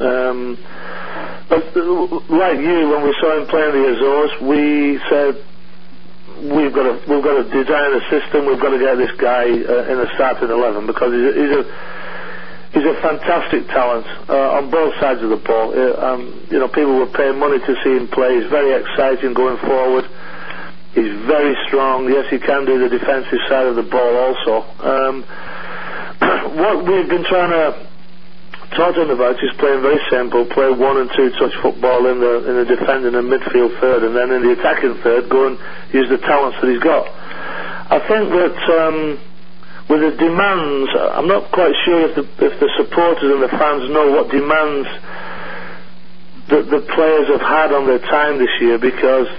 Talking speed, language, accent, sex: 185 wpm, English, British, male